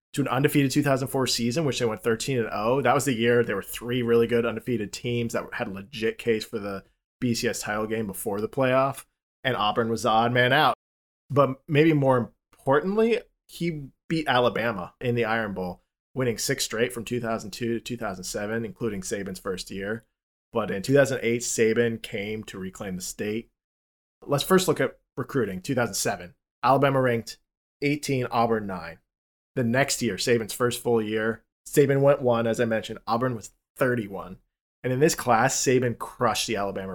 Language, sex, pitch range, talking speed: English, male, 110-130 Hz, 170 wpm